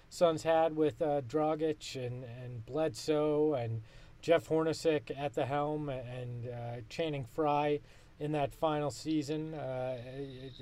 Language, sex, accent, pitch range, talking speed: English, male, American, 140-180 Hz, 130 wpm